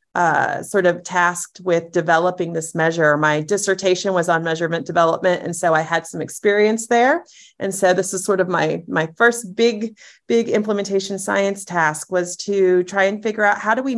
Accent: American